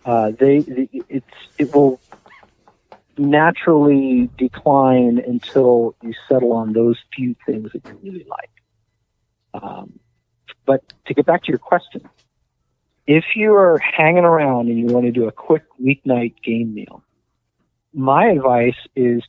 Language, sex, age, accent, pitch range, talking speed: English, male, 40-59, American, 110-135 Hz, 140 wpm